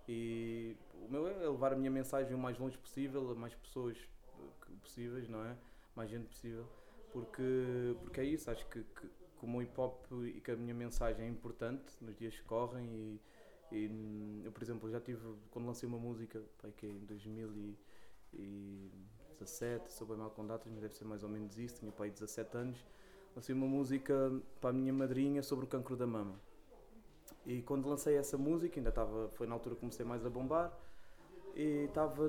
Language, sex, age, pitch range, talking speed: Portuguese, male, 20-39, 115-145 Hz, 185 wpm